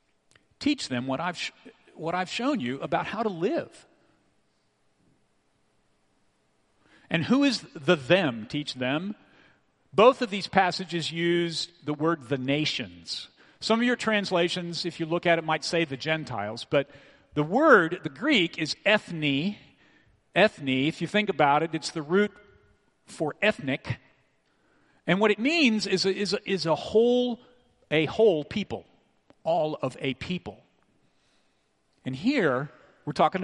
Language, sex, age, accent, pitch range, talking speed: English, male, 50-69, American, 135-205 Hz, 145 wpm